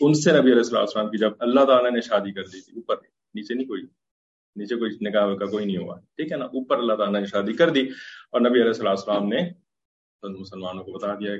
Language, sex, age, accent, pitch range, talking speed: English, male, 30-49, Indian, 100-150 Hz, 205 wpm